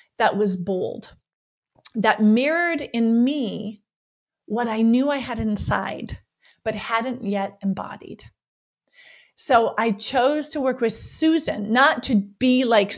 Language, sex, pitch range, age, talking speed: English, female, 215-275 Hz, 30-49, 130 wpm